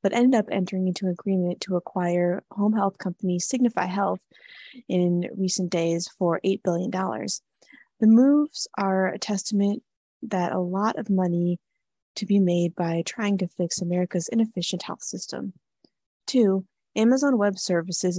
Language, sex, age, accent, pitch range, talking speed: English, female, 20-39, American, 175-210 Hz, 150 wpm